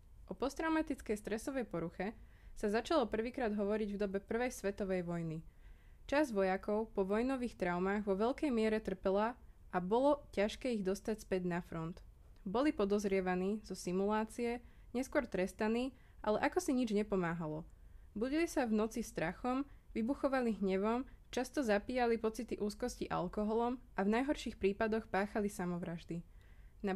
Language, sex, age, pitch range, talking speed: Slovak, female, 20-39, 190-235 Hz, 135 wpm